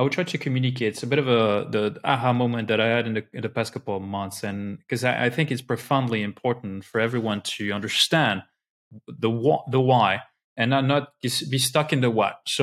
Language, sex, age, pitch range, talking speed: English, male, 20-39, 110-145 Hz, 235 wpm